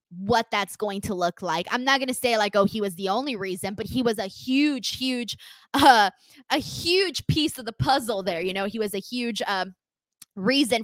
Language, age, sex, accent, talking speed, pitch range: English, 20-39, female, American, 220 wpm, 185-245 Hz